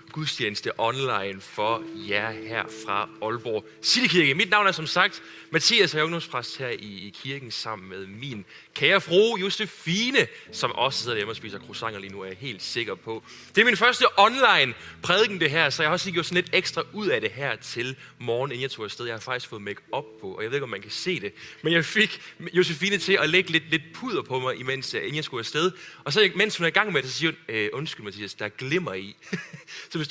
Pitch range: 120-180 Hz